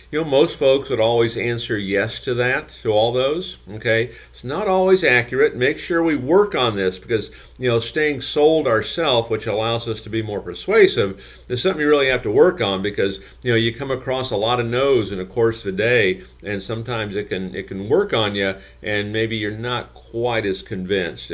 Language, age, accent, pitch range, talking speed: English, 50-69, American, 95-125 Hz, 215 wpm